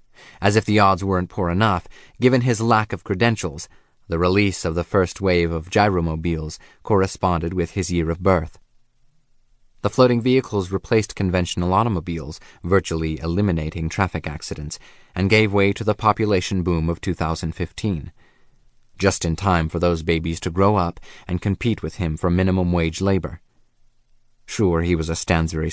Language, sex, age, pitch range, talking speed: English, male, 30-49, 85-100 Hz, 155 wpm